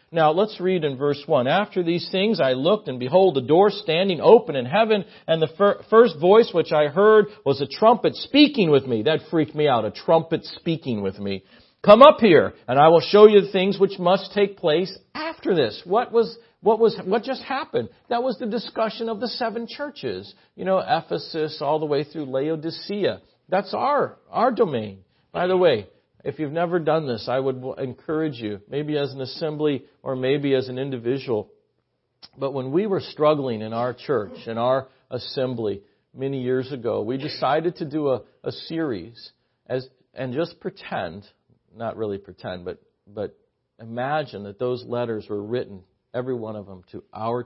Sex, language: male, English